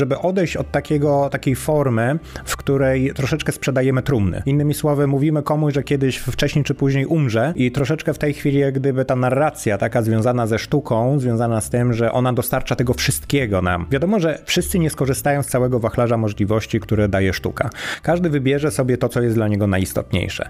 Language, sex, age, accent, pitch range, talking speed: Polish, male, 30-49, native, 115-145 Hz, 185 wpm